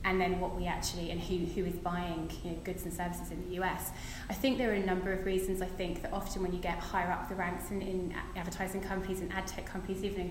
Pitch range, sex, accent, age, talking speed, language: 180-195 Hz, female, British, 20-39, 275 wpm, English